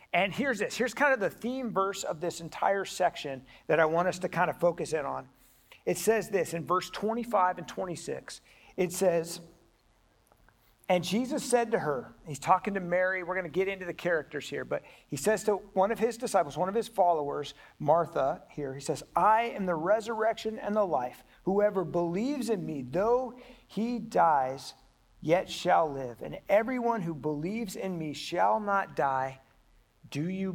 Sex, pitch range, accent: male, 150-210 Hz, American